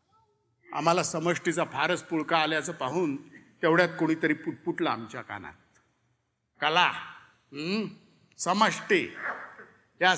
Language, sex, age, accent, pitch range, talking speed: Marathi, male, 50-69, native, 135-215 Hz, 85 wpm